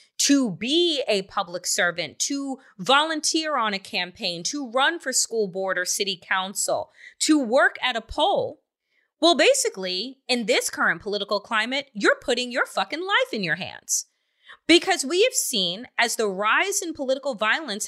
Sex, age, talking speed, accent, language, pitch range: female, 30-49, 160 wpm, American, English, 230-335 Hz